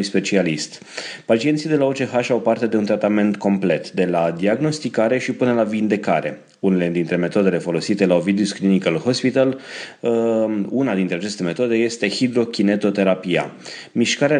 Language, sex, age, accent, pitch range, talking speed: Romanian, male, 30-49, native, 100-115 Hz, 140 wpm